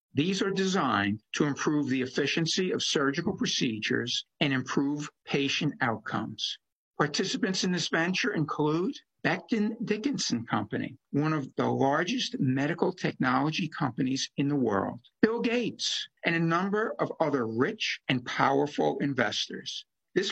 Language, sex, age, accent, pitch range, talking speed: English, male, 60-79, American, 135-195 Hz, 130 wpm